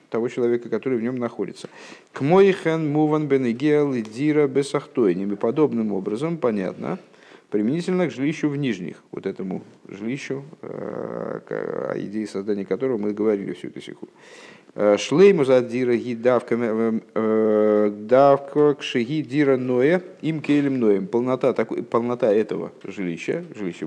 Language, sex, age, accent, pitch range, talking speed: Russian, male, 50-69, native, 105-140 Hz, 95 wpm